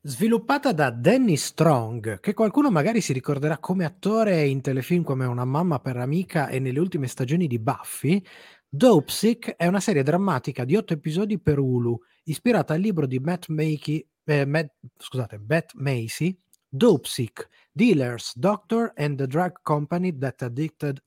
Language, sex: Italian, male